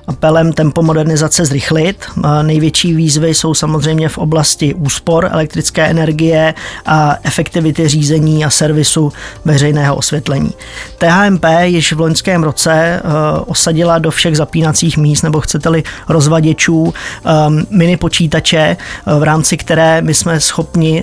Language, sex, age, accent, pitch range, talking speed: Czech, male, 20-39, native, 150-165 Hz, 115 wpm